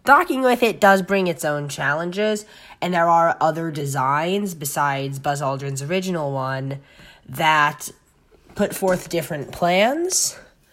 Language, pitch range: English, 155-205 Hz